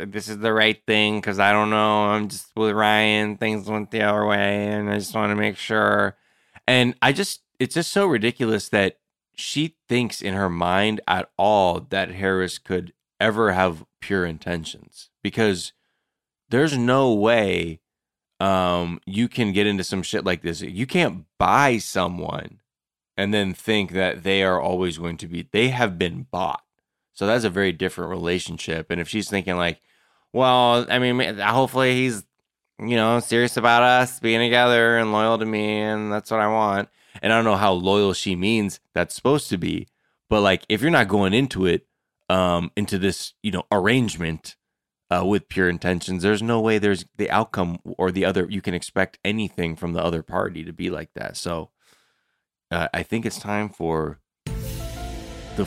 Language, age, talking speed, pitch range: English, 20-39, 180 wpm, 95-110 Hz